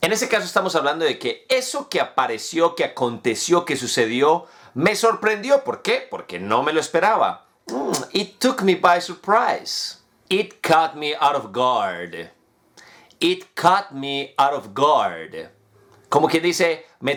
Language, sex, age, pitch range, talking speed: English, male, 30-49, 140-200 Hz, 155 wpm